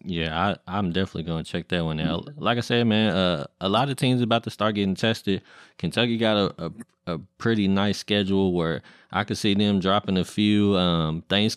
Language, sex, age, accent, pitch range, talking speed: English, male, 20-39, American, 85-100 Hz, 215 wpm